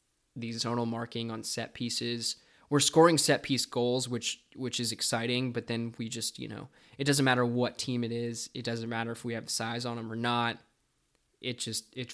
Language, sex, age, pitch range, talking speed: English, male, 20-39, 120-130 Hz, 210 wpm